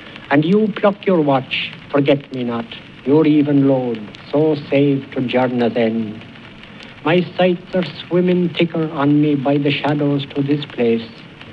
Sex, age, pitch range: male, 60-79, 125-165 Hz